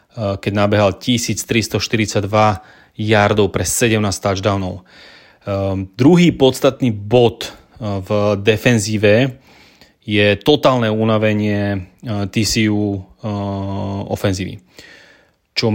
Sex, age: male, 30-49